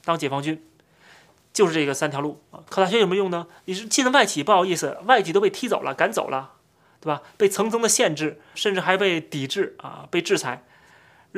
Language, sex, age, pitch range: Chinese, male, 30-49, 160-230 Hz